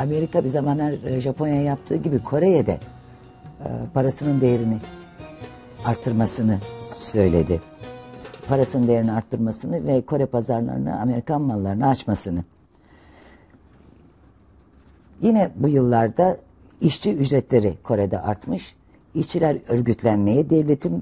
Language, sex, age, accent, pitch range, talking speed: Turkish, female, 60-79, native, 100-160 Hz, 90 wpm